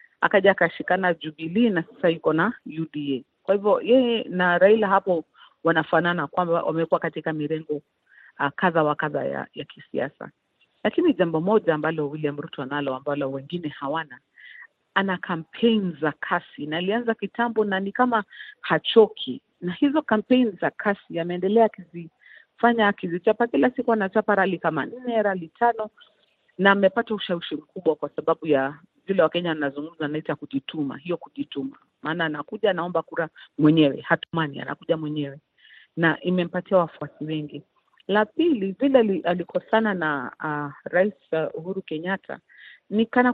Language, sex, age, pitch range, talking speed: Swahili, female, 40-59, 155-205 Hz, 145 wpm